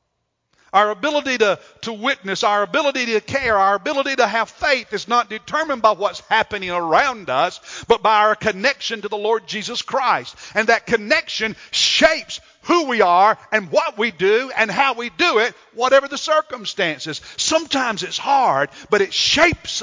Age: 50-69